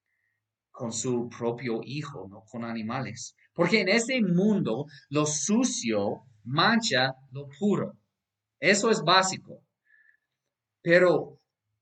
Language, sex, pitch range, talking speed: Spanish, male, 125-180 Hz, 100 wpm